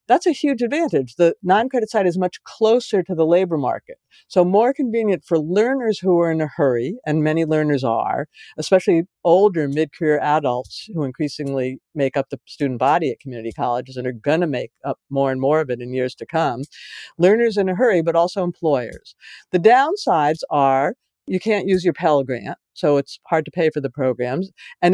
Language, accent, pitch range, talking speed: English, American, 145-190 Hz, 195 wpm